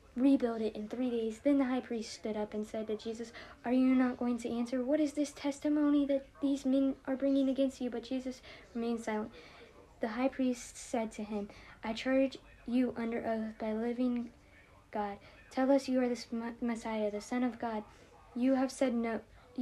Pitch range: 225-270 Hz